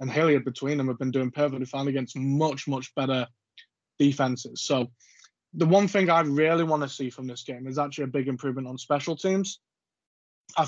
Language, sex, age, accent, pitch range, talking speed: English, male, 20-39, British, 130-150 Hz, 195 wpm